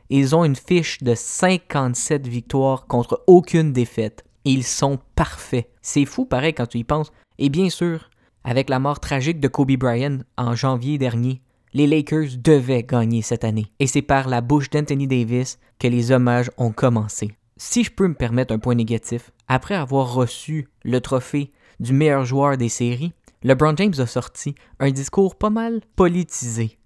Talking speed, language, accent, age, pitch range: 175 wpm, French, Canadian, 20-39, 120-150 Hz